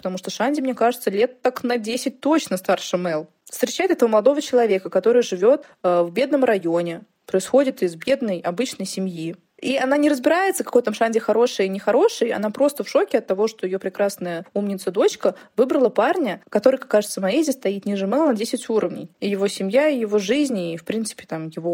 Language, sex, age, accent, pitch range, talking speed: Russian, female, 20-39, native, 195-265 Hz, 190 wpm